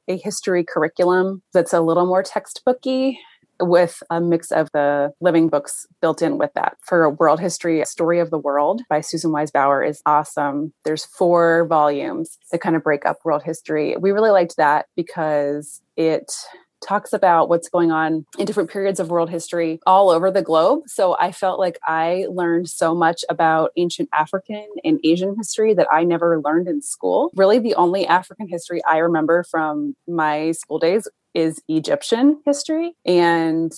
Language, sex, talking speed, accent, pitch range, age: English, female, 170 wpm, American, 160-190 Hz, 30-49